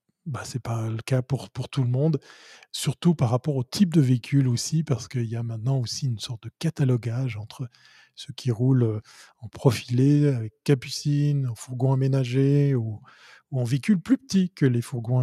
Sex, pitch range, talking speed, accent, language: male, 120-140 Hz, 190 wpm, French, French